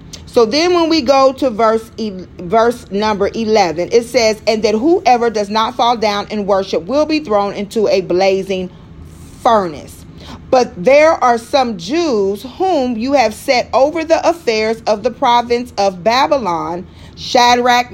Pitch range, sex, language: 195-270 Hz, female, English